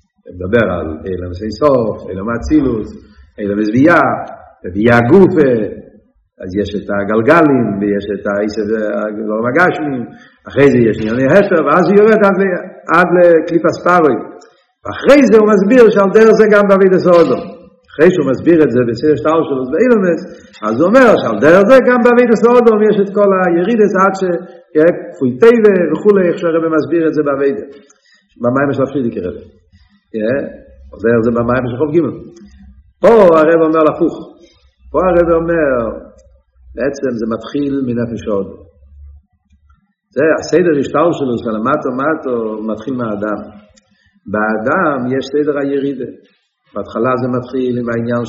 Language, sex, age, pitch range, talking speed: Hebrew, male, 50-69, 110-175 Hz, 145 wpm